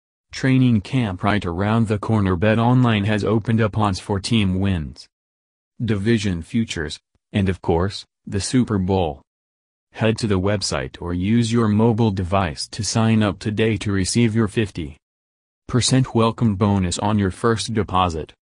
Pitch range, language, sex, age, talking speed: 90-110 Hz, English, male, 40-59, 150 wpm